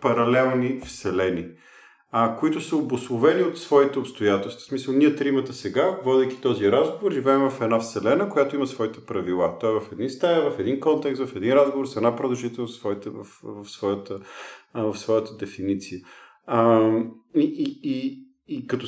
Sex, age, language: male, 40-59, Bulgarian